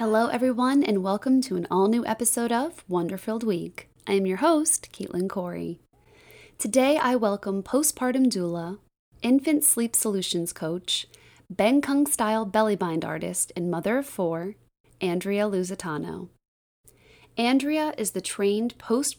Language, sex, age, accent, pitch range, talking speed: English, female, 30-49, American, 180-235 Hz, 135 wpm